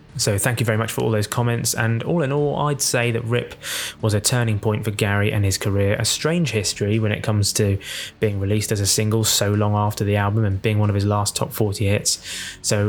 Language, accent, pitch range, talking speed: English, British, 105-125 Hz, 245 wpm